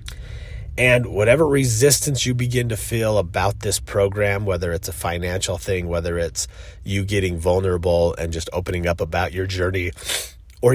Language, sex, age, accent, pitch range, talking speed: English, male, 30-49, American, 85-105 Hz, 155 wpm